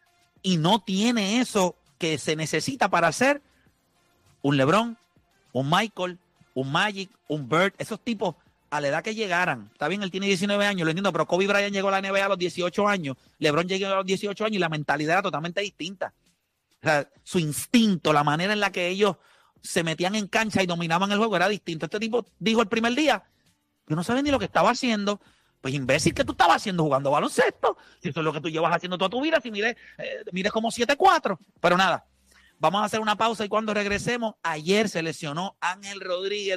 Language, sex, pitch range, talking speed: Spanish, male, 165-210 Hz, 205 wpm